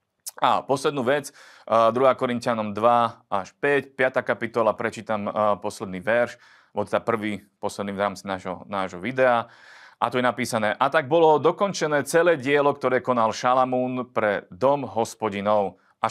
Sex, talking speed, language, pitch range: male, 140 wpm, Slovak, 105-130 Hz